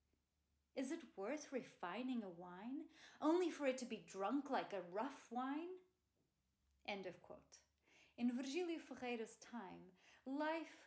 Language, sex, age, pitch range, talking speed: Portuguese, female, 30-49, 190-255 Hz, 135 wpm